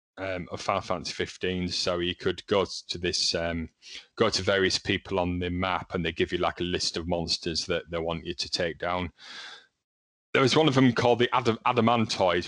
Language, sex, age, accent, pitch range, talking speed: English, male, 30-49, British, 90-115 Hz, 210 wpm